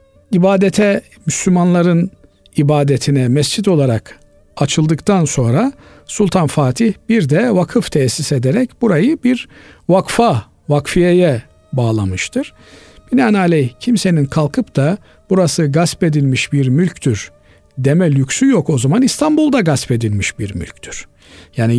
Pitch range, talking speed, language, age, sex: 135-190 Hz, 105 wpm, Turkish, 50-69, male